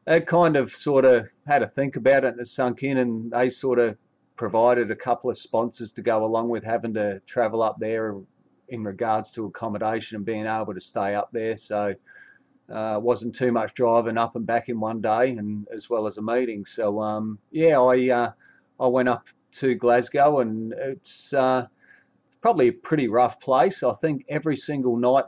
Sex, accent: male, Australian